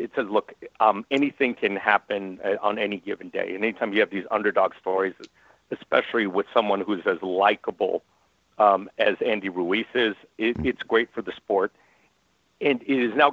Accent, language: American, English